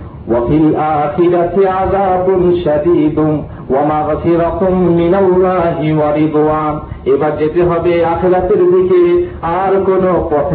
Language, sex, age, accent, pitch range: Bengali, male, 50-69, native, 150-200 Hz